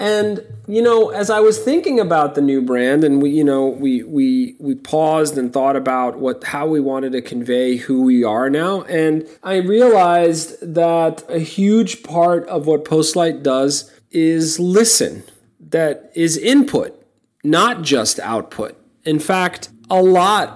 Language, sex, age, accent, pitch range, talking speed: English, male, 30-49, American, 125-185 Hz, 160 wpm